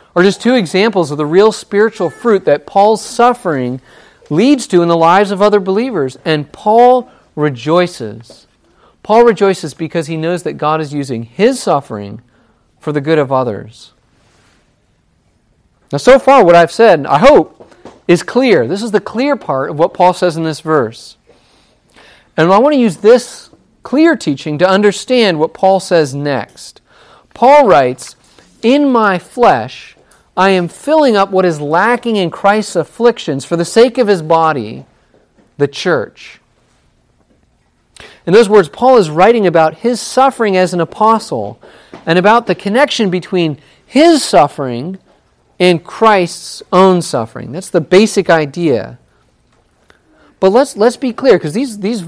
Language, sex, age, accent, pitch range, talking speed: English, male, 40-59, American, 160-230 Hz, 150 wpm